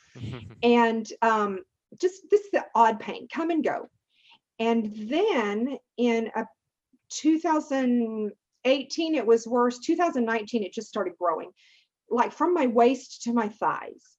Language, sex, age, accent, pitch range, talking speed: English, female, 40-59, American, 220-300 Hz, 130 wpm